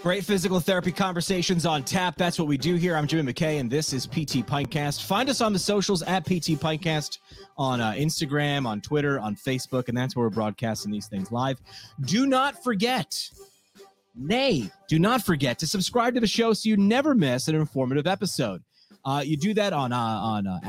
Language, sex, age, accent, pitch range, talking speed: English, male, 30-49, American, 135-195 Hz, 200 wpm